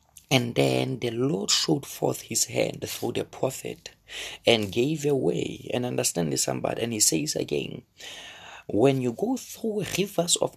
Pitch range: 130-180 Hz